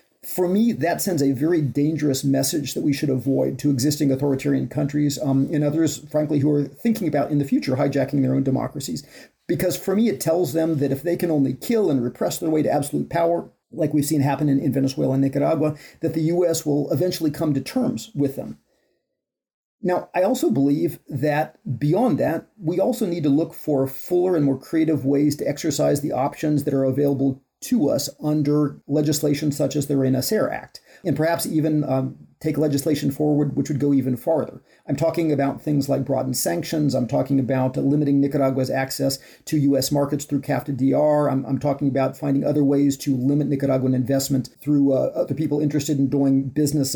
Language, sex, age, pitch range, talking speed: English, male, 40-59, 135-155 Hz, 195 wpm